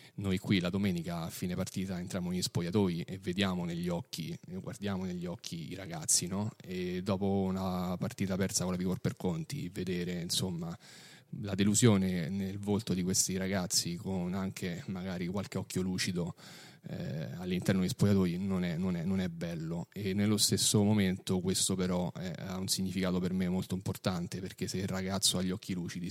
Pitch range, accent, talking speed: 95-115 Hz, native, 175 wpm